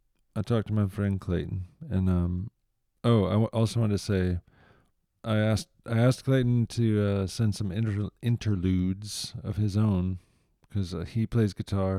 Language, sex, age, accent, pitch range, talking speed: English, male, 40-59, American, 95-110 Hz, 170 wpm